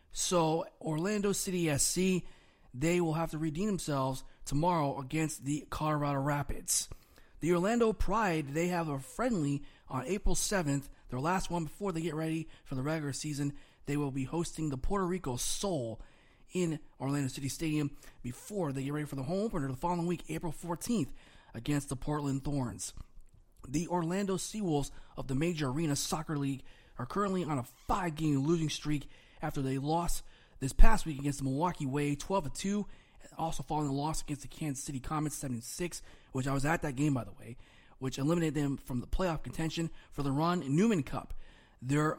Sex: male